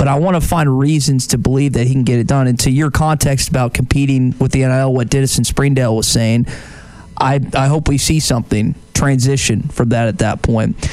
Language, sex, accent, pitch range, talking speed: English, male, American, 120-140 Hz, 220 wpm